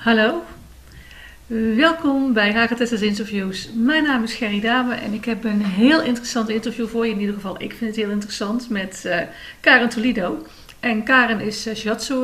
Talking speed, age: 180 wpm, 50-69